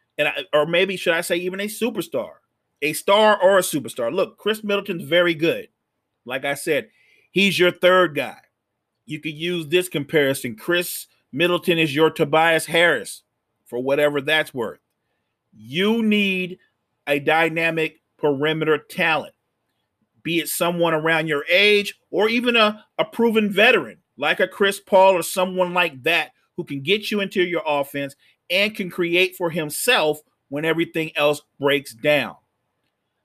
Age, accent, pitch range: 40-59, American, 155-190 Hz